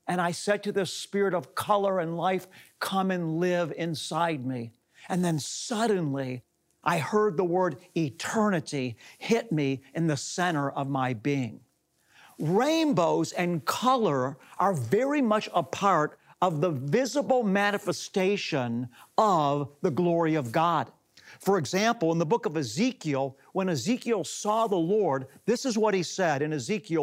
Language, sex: English, male